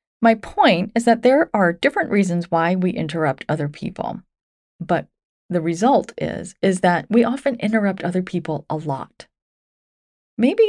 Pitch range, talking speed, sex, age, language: 175-245 Hz, 150 wpm, female, 30-49, English